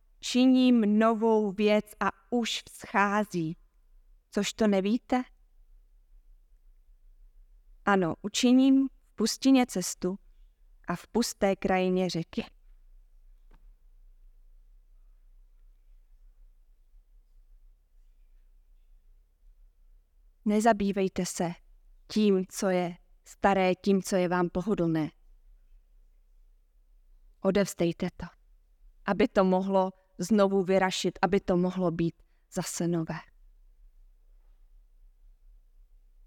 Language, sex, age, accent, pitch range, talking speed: Czech, female, 20-39, native, 165-215 Hz, 70 wpm